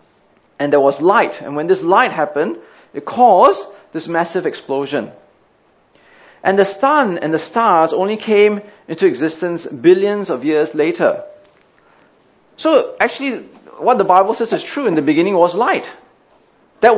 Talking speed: 150 wpm